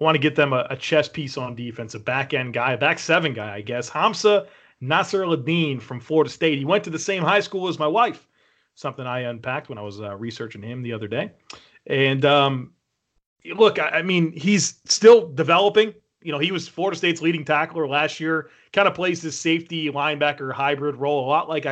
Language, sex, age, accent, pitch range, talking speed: English, male, 30-49, American, 135-160 Hz, 210 wpm